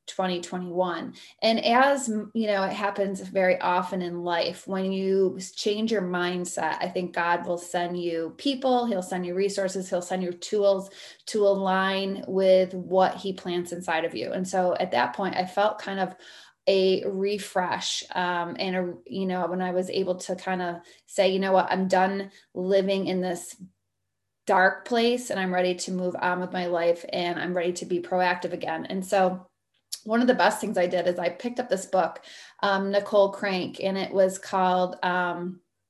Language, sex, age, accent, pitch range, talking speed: English, female, 20-39, American, 180-200 Hz, 190 wpm